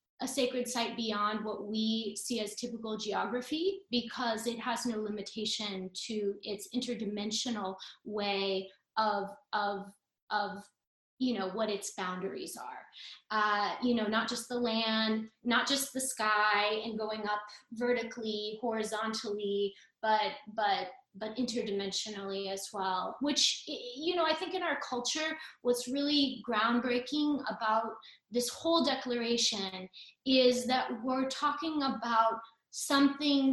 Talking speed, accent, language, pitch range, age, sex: 125 wpm, American, English, 210-255 Hz, 20-39, female